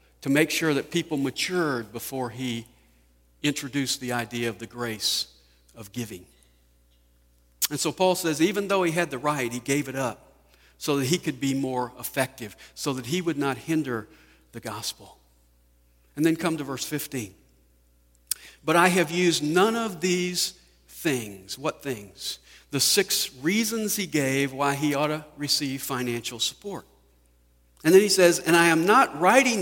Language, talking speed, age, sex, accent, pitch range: English, 165 wpm, 50-69, male, American, 115-175 Hz